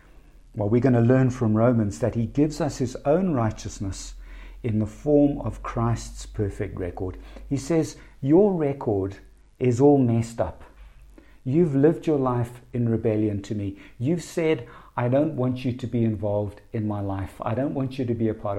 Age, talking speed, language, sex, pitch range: 50-69, 205 wpm, English, male, 115-150 Hz